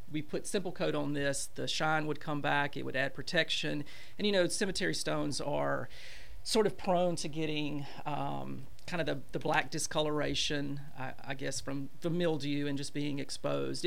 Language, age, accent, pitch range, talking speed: English, 40-59, American, 135-170 Hz, 185 wpm